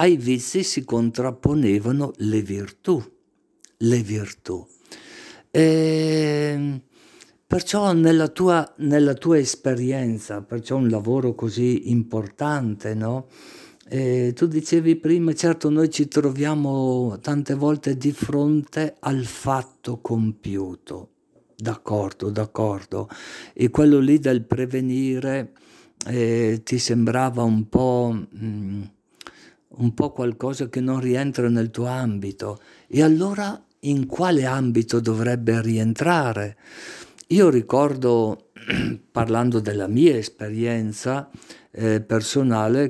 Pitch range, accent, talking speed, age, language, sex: 110-135 Hz, native, 100 wpm, 50-69, Italian, male